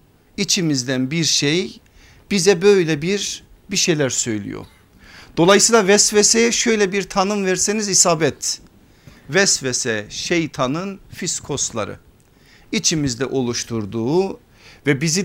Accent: native